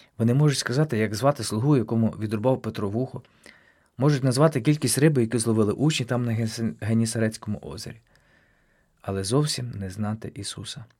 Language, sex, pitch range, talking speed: Ukrainian, male, 110-140 Hz, 140 wpm